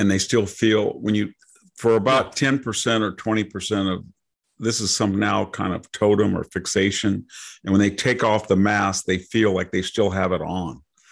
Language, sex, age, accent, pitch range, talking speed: English, male, 50-69, American, 95-110 Hz, 205 wpm